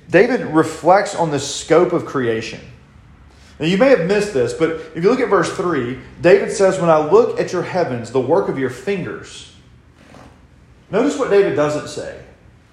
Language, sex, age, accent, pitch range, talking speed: English, male, 30-49, American, 130-175 Hz, 180 wpm